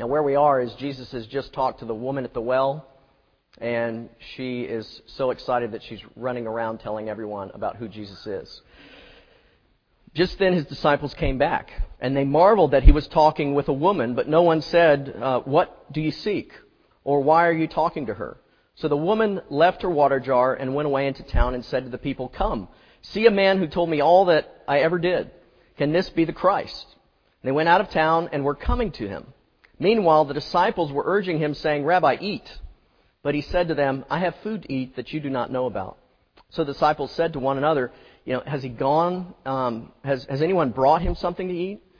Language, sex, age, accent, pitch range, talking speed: English, male, 40-59, American, 130-160 Hz, 215 wpm